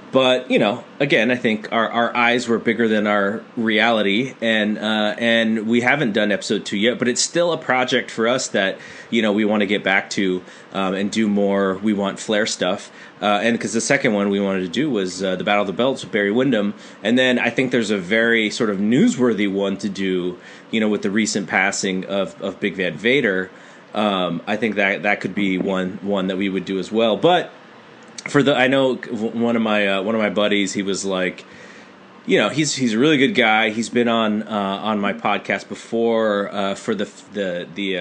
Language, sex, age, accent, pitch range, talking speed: English, male, 30-49, American, 95-115 Hz, 225 wpm